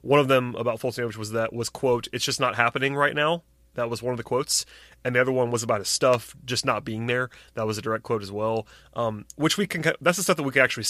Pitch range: 115-135 Hz